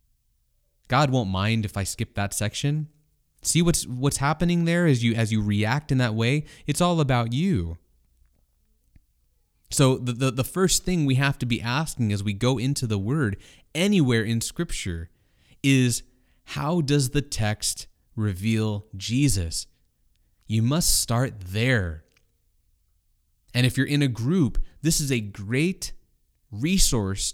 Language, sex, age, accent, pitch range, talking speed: English, male, 30-49, American, 95-135 Hz, 145 wpm